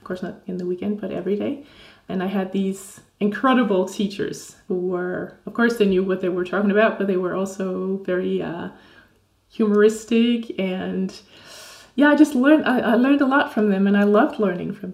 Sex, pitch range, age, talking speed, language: female, 190-225 Hz, 20-39, 200 wpm, English